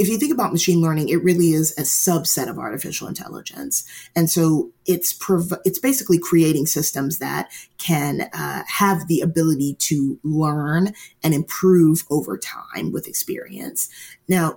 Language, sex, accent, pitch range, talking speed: English, female, American, 155-180 Hz, 150 wpm